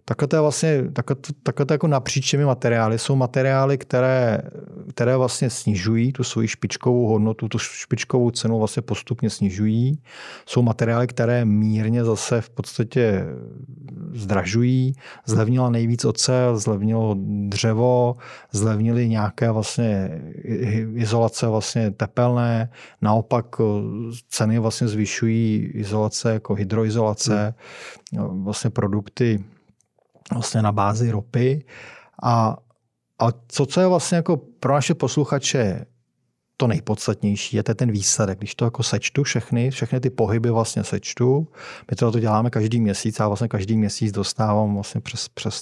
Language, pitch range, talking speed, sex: Czech, 110-125 Hz, 125 wpm, male